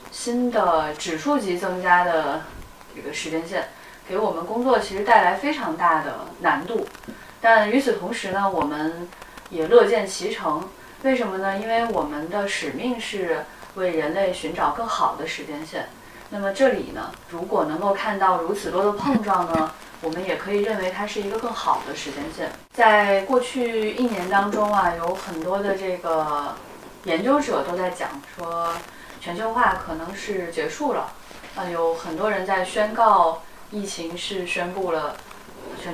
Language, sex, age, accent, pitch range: Chinese, female, 20-39, native, 175-230 Hz